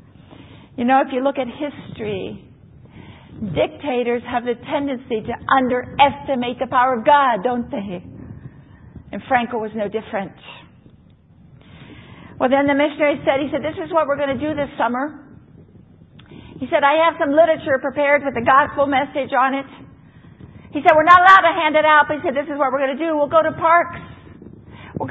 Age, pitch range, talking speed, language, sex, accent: 50-69, 265-310 Hz, 185 wpm, English, female, American